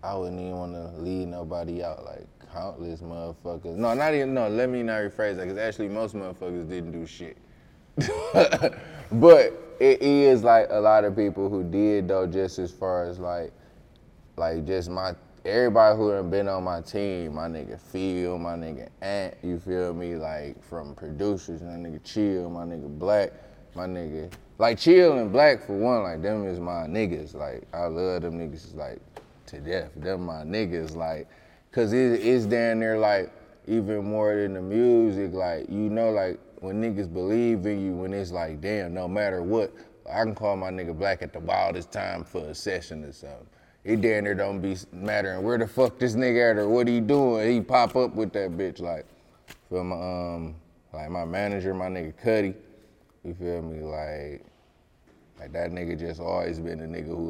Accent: American